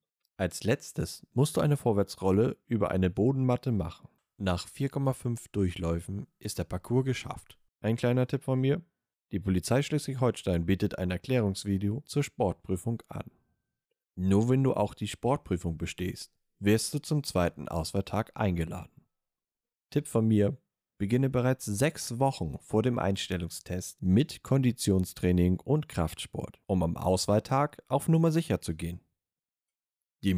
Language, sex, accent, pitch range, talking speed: German, male, German, 90-130 Hz, 130 wpm